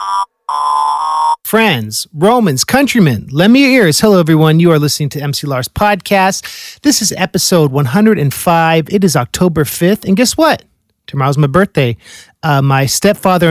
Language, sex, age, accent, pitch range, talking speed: English, male, 40-59, American, 150-195 Hz, 145 wpm